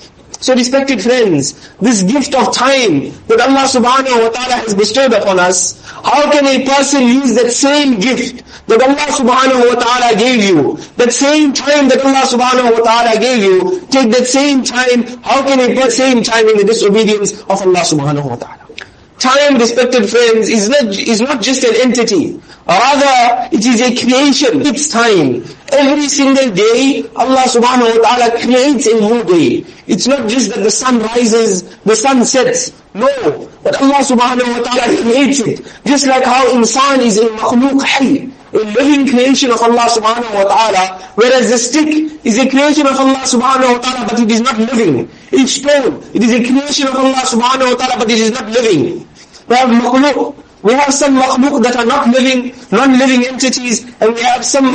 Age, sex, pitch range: 50-69, male, 235-270 Hz